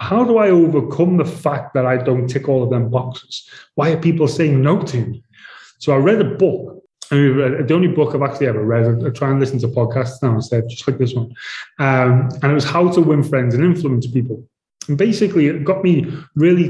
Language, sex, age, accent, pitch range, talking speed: English, male, 20-39, British, 125-155 Hz, 225 wpm